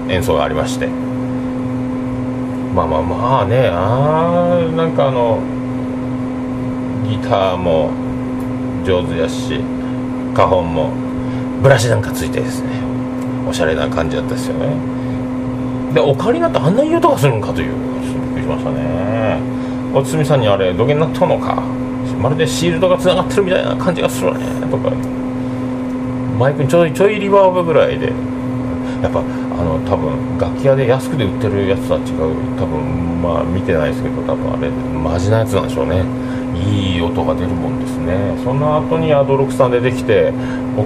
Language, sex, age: Japanese, male, 40-59